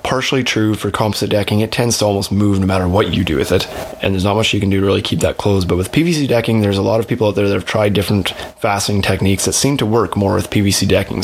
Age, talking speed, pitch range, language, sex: 20-39, 290 wpm, 100-115 Hz, English, male